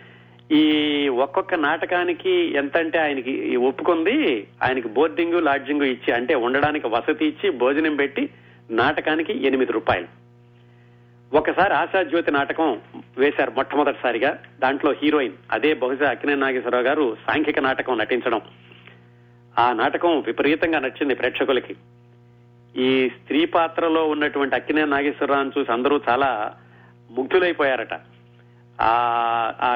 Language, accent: Telugu, native